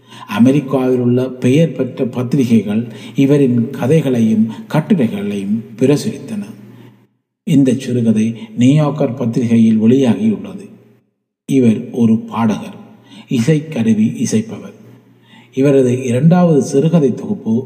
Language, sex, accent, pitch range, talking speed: Tamil, male, native, 125-210 Hz, 85 wpm